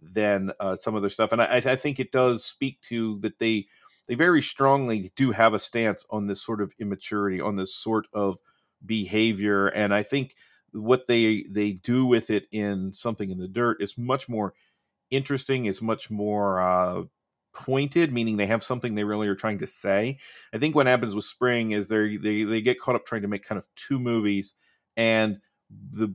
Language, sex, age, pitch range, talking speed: English, male, 40-59, 100-125 Hz, 200 wpm